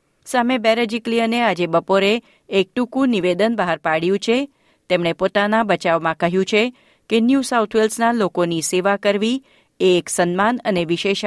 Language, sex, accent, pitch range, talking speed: Gujarati, female, native, 175-225 Hz, 105 wpm